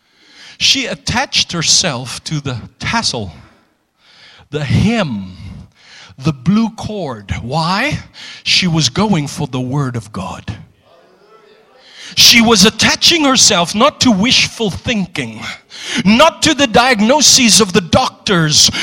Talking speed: 110 wpm